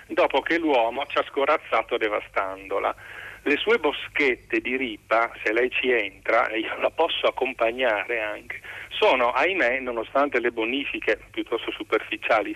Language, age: Italian, 40-59